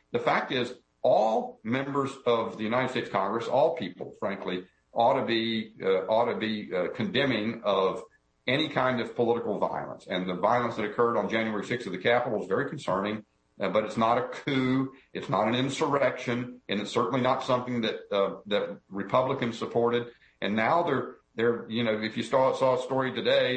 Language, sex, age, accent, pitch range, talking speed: English, male, 50-69, American, 105-130 Hz, 190 wpm